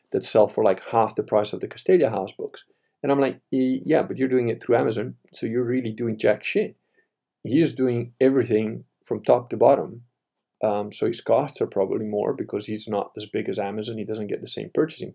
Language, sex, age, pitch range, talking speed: English, male, 50-69, 120-175 Hz, 220 wpm